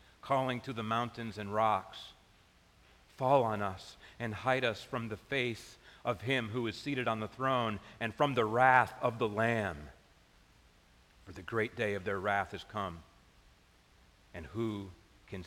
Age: 40-59